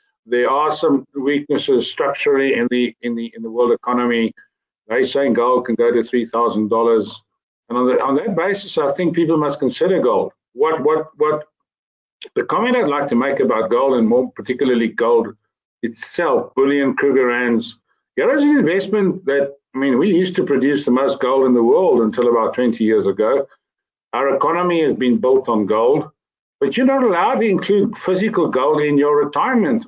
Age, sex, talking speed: 50-69, male, 180 wpm